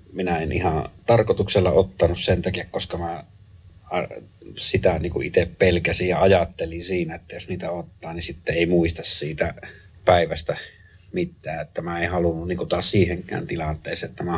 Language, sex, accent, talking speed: Finnish, male, native, 155 wpm